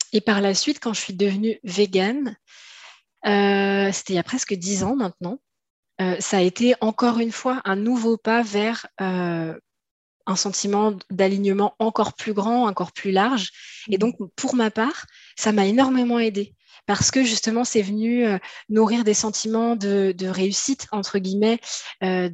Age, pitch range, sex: 20-39, 195-235 Hz, female